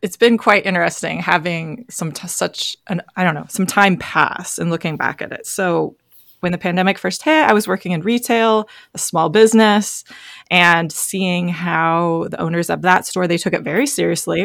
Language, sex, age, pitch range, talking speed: English, female, 20-39, 175-215 Hz, 195 wpm